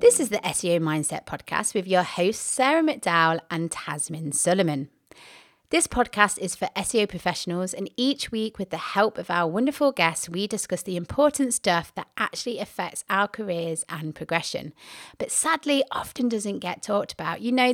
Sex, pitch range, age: female, 175-245 Hz, 30-49